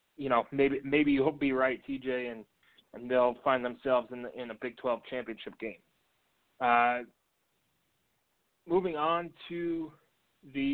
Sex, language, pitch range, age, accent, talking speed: male, English, 120-150 Hz, 30-49, American, 145 wpm